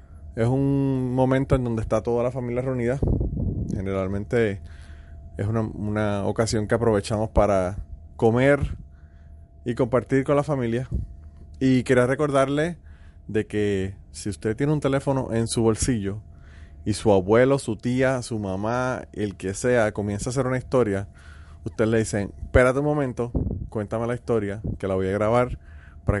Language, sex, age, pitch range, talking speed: Spanish, male, 30-49, 95-125 Hz, 155 wpm